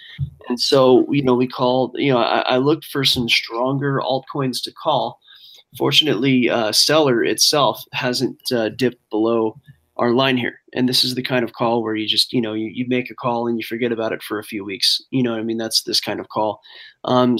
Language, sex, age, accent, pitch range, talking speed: English, male, 20-39, American, 120-145 Hz, 225 wpm